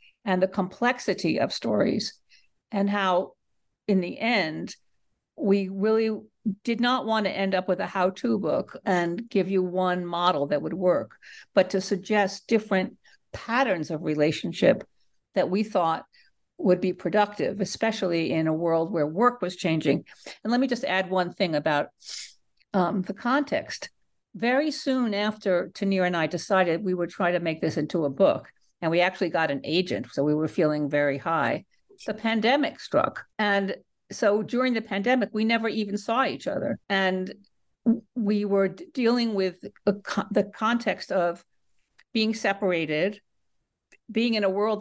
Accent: American